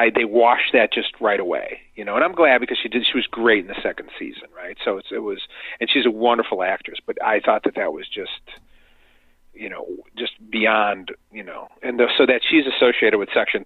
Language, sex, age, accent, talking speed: English, male, 40-59, American, 235 wpm